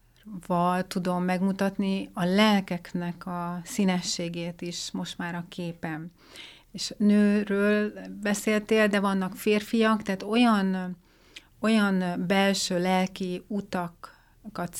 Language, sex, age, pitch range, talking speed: Hungarian, female, 30-49, 175-200 Hz, 95 wpm